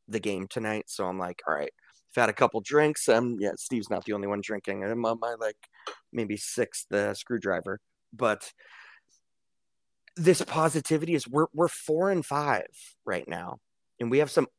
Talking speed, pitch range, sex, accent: 185 wpm, 105-125 Hz, male, American